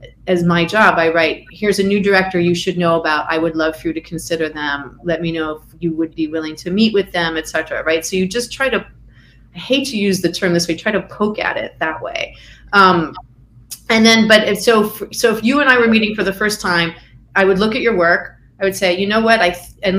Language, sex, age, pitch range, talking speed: English, female, 30-49, 165-200 Hz, 265 wpm